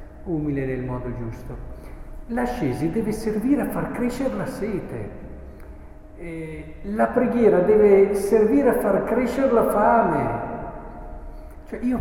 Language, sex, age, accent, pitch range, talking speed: Italian, male, 50-69, native, 145-215 Hz, 110 wpm